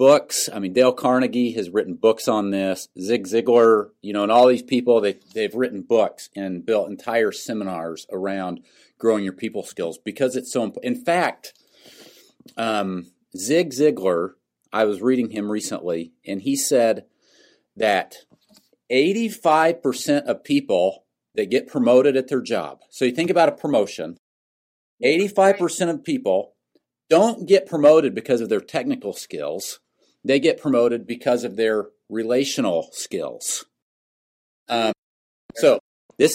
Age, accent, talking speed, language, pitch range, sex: 40-59, American, 140 wpm, English, 105-165 Hz, male